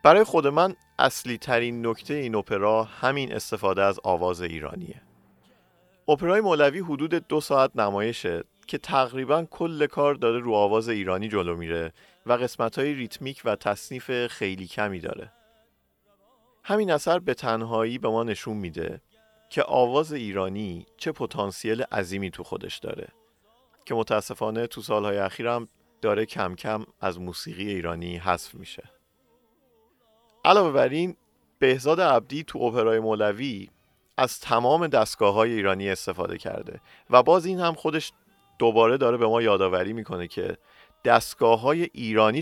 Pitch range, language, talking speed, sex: 95-145 Hz, Persian, 135 wpm, male